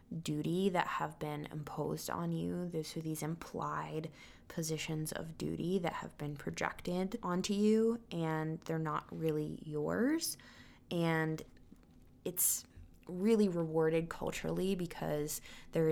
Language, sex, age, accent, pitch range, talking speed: English, female, 20-39, American, 145-170 Hz, 120 wpm